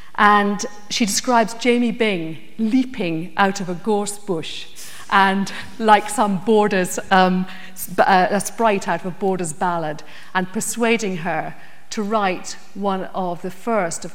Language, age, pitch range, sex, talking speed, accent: English, 50-69, 180-210 Hz, female, 140 wpm, British